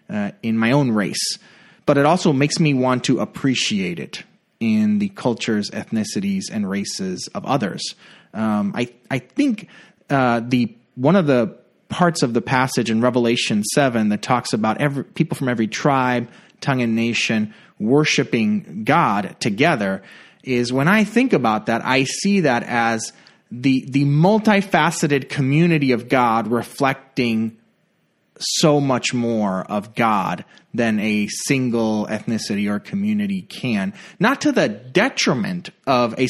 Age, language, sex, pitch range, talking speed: 30-49, English, male, 115-180 Hz, 145 wpm